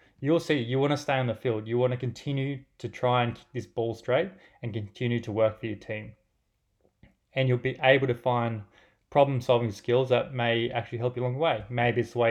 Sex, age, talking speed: male, 20-39, 230 wpm